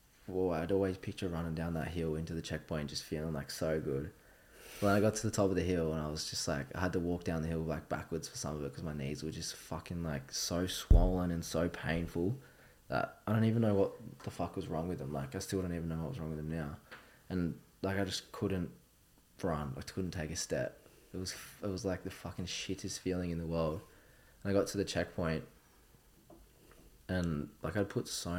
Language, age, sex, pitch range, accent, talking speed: English, 20-39, male, 80-95 Hz, Australian, 240 wpm